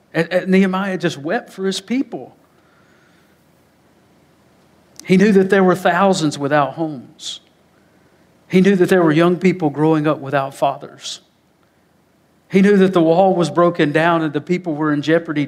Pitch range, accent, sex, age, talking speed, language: 145-180 Hz, American, male, 50-69, 150 wpm, English